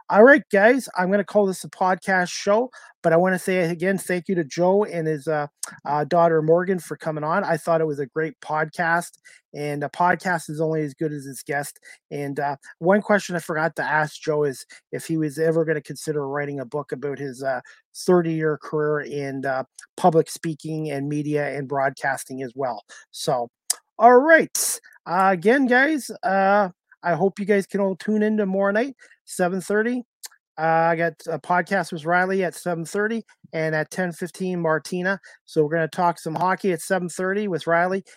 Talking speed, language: 195 wpm, English